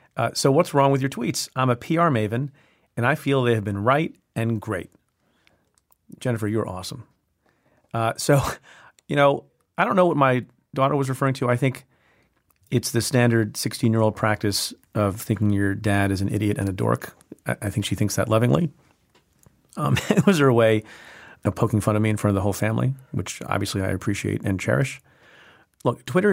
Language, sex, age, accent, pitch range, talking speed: English, male, 40-59, American, 105-130 Hz, 190 wpm